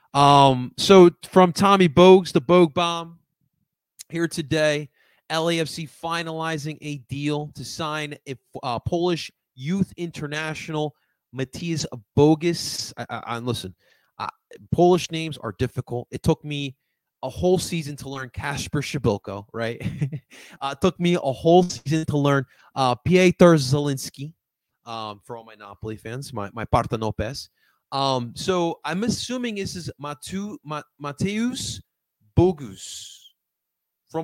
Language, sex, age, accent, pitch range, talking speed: English, male, 30-49, American, 115-165 Hz, 125 wpm